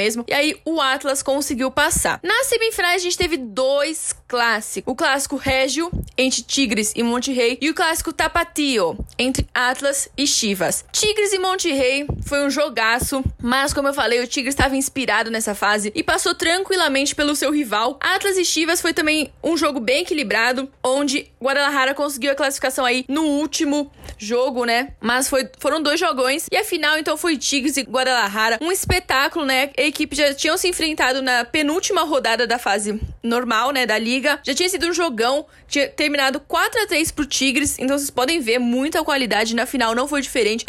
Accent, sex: Brazilian, female